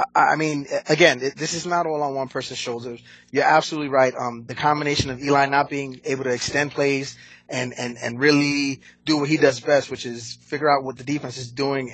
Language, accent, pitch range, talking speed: English, American, 130-155 Hz, 215 wpm